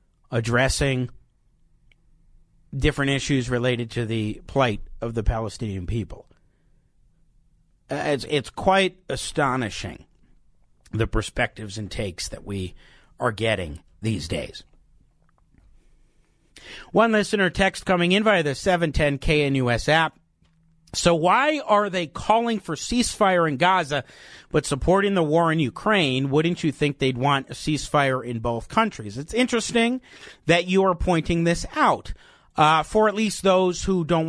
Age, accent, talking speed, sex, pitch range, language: 50-69, American, 135 wpm, male, 120-175 Hz, English